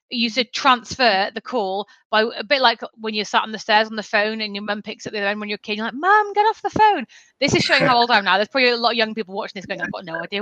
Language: English